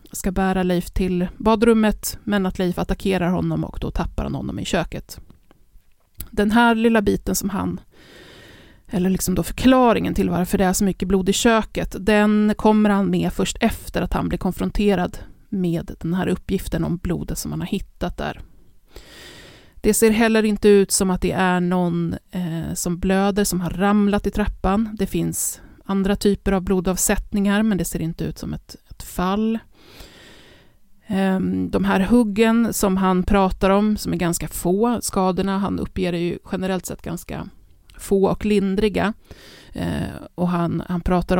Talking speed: 165 wpm